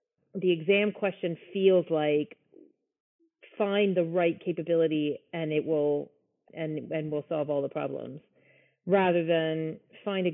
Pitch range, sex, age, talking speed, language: 155-185 Hz, female, 30-49, 135 wpm, English